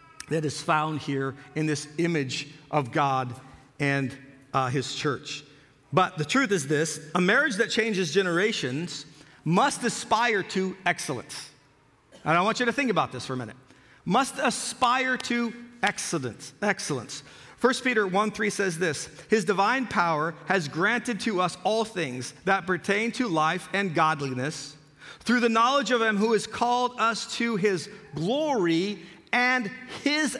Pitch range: 155-220 Hz